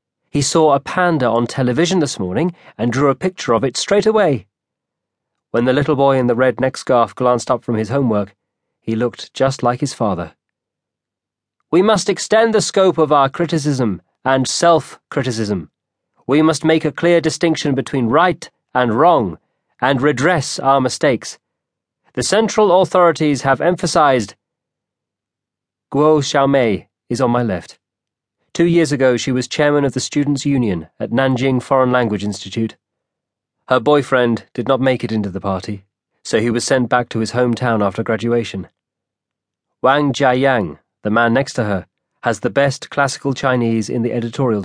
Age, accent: 30-49, British